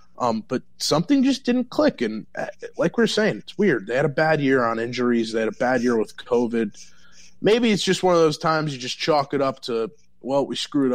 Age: 30-49